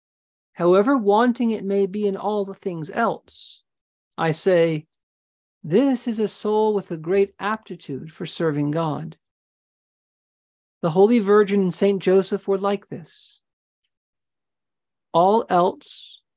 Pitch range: 145-200 Hz